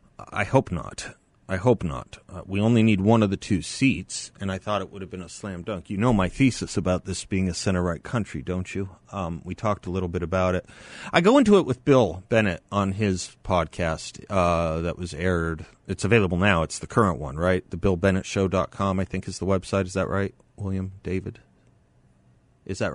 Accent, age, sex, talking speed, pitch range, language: American, 30-49, male, 225 wpm, 85-105 Hz, English